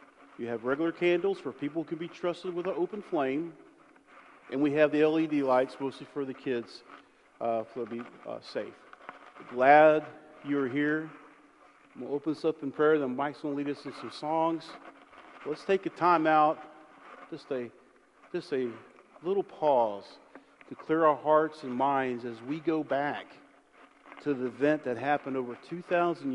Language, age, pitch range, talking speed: English, 40-59, 125-155 Hz, 175 wpm